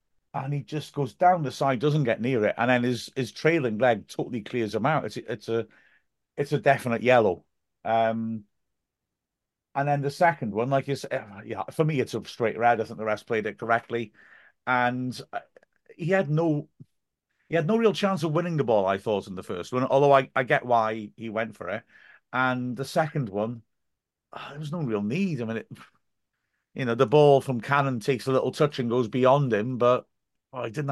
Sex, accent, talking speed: male, British, 215 wpm